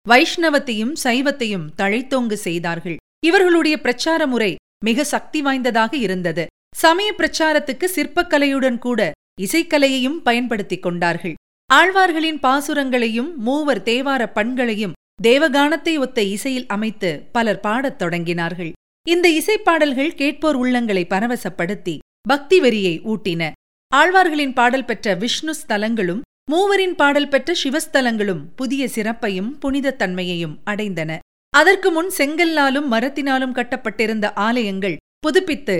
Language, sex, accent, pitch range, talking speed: Tamil, female, native, 205-300 Hz, 95 wpm